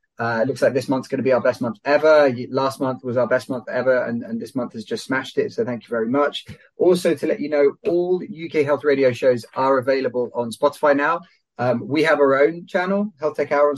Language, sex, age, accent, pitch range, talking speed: English, male, 30-49, British, 125-155 Hz, 255 wpm